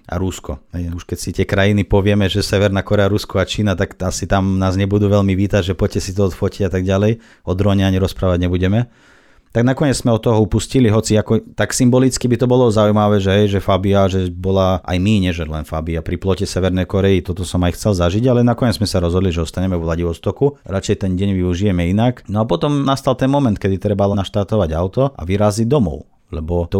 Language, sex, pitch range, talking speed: Slovak, male, 90-105 Hz, 215 wpm